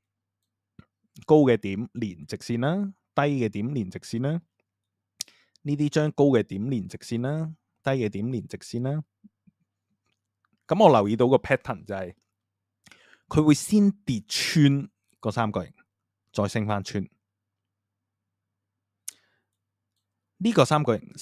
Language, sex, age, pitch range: Chinese, male, 20-39, 105-155 Hz